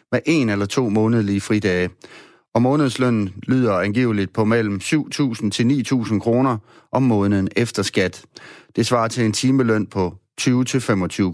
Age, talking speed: 30-49, 145 wpm